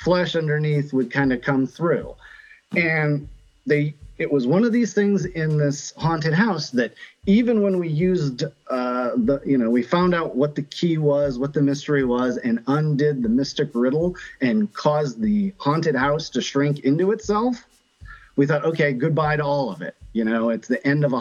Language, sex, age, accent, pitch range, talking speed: English, male, 40-59, American, 130-200 Hz, 190 wpm